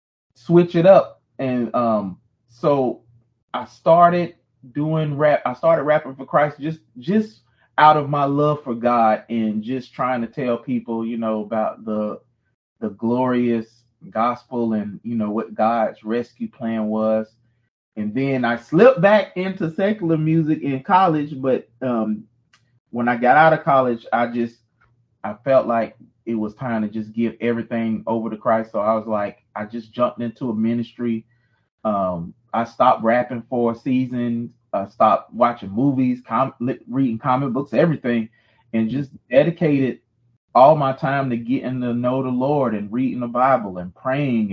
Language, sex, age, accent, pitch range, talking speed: English, male, 30-49, American, 115-140 Hz, 160 wpm